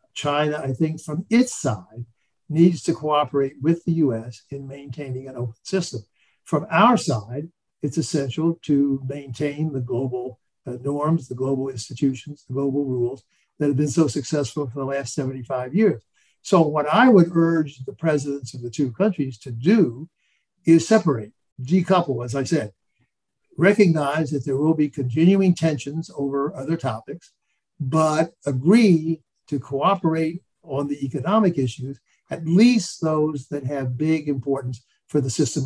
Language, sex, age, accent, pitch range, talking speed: English, male, 60-79, American, 135-165 Hz, 155 wpm